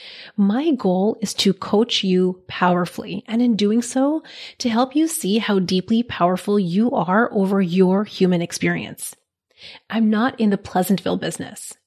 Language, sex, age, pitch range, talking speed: English, female, 30-49, 185-235 Hz, 150 wpm